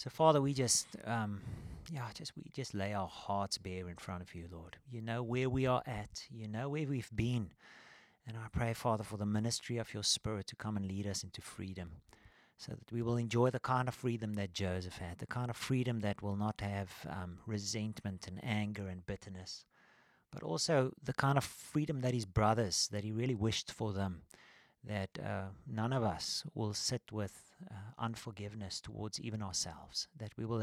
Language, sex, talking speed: English, male, 200 wpm